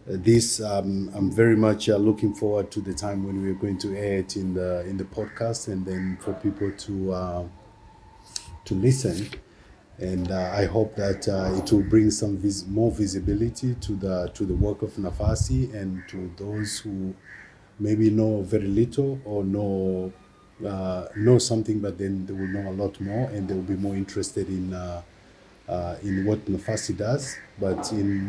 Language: English